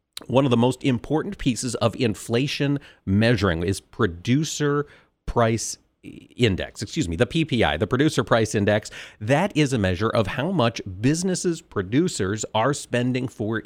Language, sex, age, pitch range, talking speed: English, male, 40-59, 105-140 Hz, 145 wpm